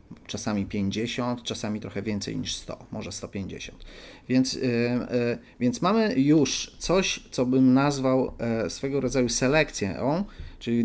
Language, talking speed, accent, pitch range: Polish, 115 wpm, native, 110-140 Hz